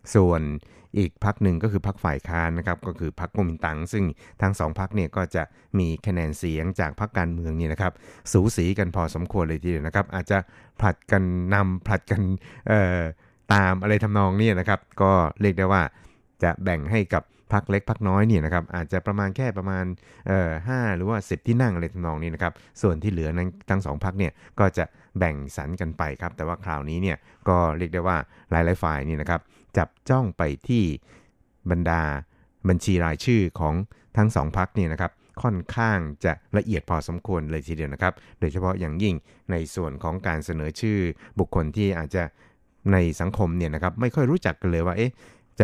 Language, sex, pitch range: Thai, male, 85-100 Hz